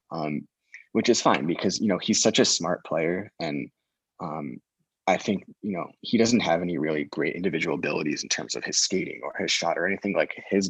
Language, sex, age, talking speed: English, male, 20-39, 215 wpm